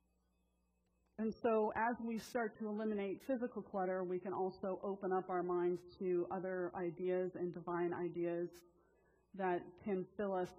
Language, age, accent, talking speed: English, 40-59, American, 145 wpm